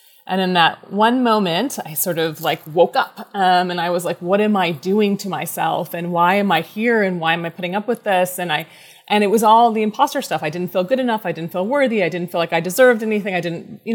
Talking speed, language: 270 wpm, English